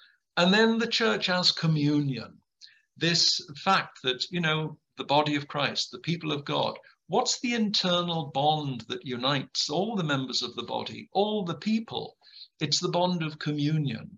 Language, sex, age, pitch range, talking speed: English, male, 50-69, 145-195 Hz, 165 wpm